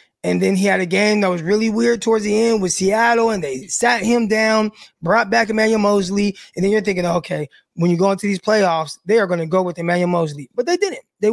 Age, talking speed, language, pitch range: 20-39, 250 wpm, English, 175-215 Hz